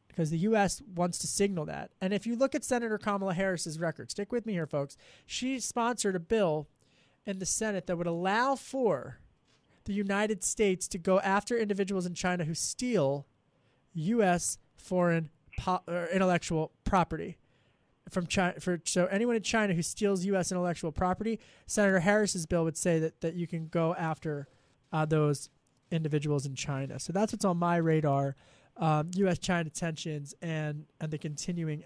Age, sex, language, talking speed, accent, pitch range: 20-39, male, English, 170 wpm, American, 145-180 Hz